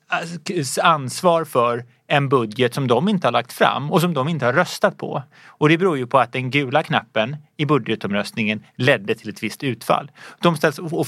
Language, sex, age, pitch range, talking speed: Swedish, male, 30-49, 130-170 Hz, 195 wpm